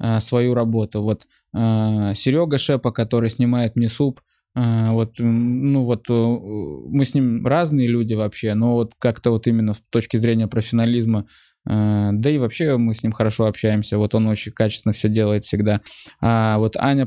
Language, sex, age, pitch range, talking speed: Russian, male, 20-39, 110-125 Hz, 160 wpm